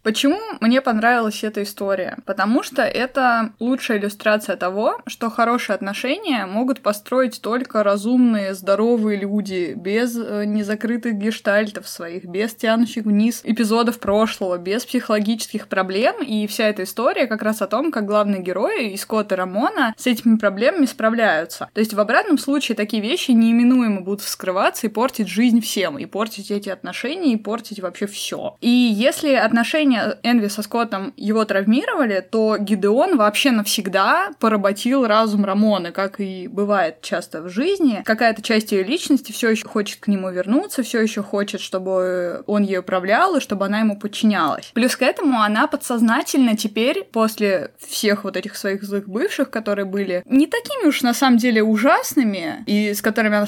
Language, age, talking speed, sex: Russian, 20-39, 160 wpm, female